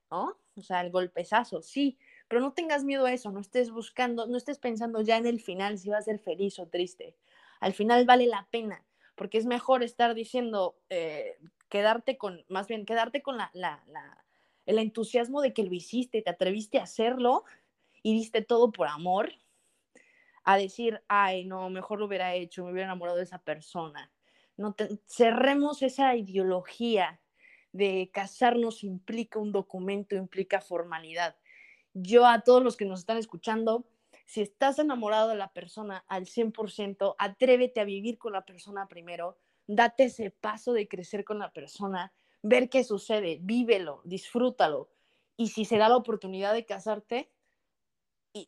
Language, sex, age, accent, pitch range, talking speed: Spanish, female, 20-39, Mexican, 195-245 Hz, 165 wpm